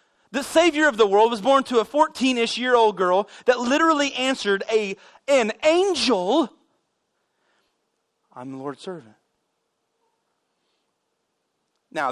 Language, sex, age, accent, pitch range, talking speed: English, male, 30-49, American, 155-225 Hz, 120 wpm